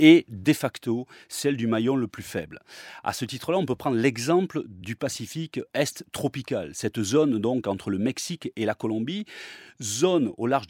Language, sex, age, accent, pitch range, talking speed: French, male, 30-49, French, 105-155 Hz, 180 wpm